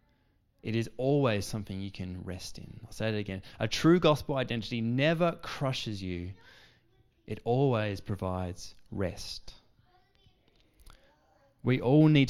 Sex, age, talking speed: male, 20-39, 125 wpm